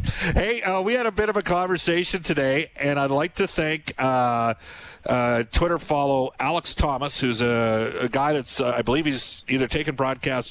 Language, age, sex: English, 50-69, male